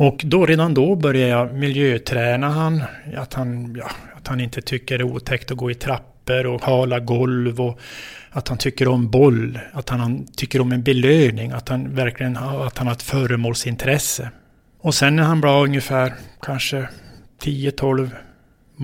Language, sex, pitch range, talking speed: Swedish, male, 125-140 Hz, 175 wpm